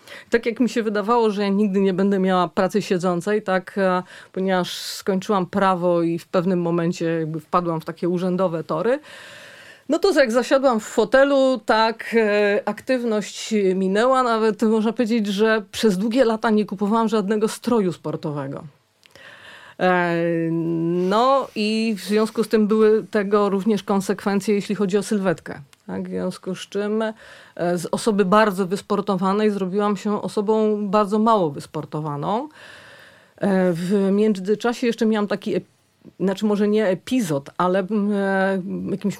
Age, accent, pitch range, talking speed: 30-49, native, 185-225 Hz, 135 wpm